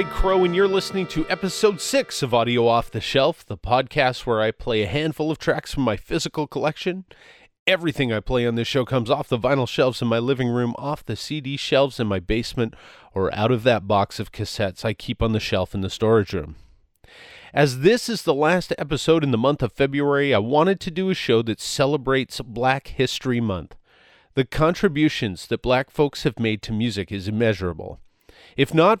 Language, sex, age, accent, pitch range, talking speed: English, male, 40-59, American, 110-145 Hz, 205 wpm